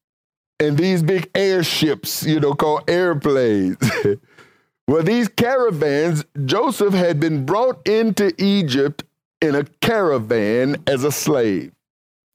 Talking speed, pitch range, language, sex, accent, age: 110 wpm, 165-220 Hz, English, male, American, 50-69